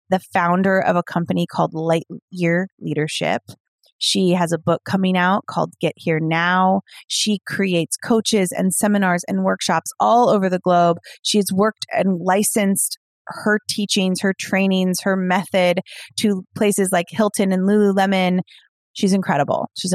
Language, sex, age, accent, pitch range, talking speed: English, female, 30-49, American, 165-200 Hz, 145 wpm